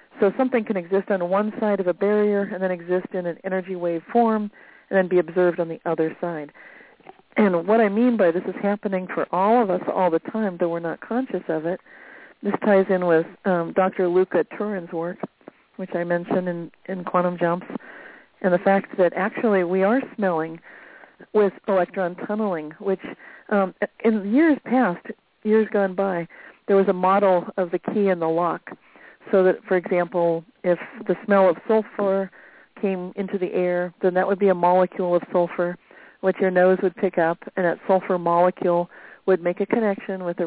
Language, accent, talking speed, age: English, American, 190 wpm, 40-59